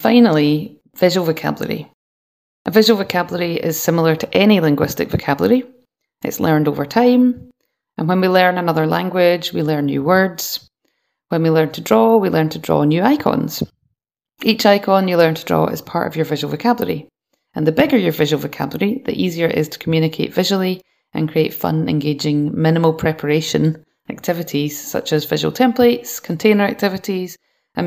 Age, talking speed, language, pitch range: 30-49, 165 wpm, English, 155-215 Hz